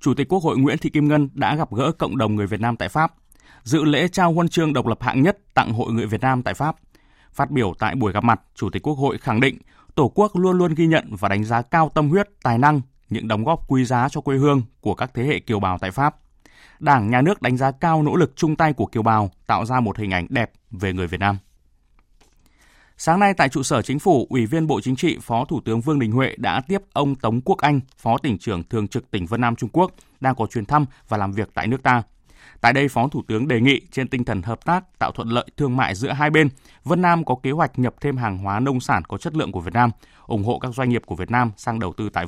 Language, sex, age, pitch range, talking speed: Vietnamese, male, 20-39, 115-150 Hz, 275 wpm